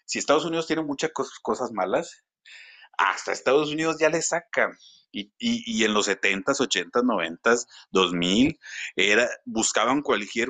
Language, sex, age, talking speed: Spanish, male, 30-49, 145 wpm